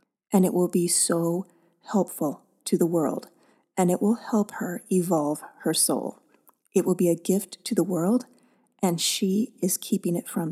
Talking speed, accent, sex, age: 175 wpm, American, female, 30-49